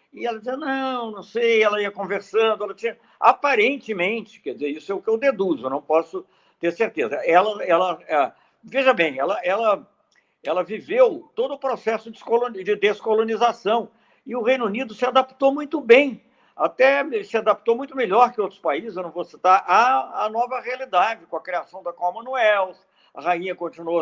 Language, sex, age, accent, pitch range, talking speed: Portuguese, male, 60-79, Brazilian, 180-260 Hz, 185 wpm